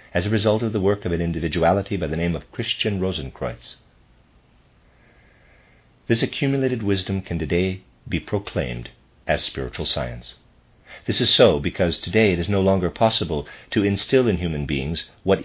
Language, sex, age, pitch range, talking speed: English, male, 50-69, 85-110 Hz, 160 wpm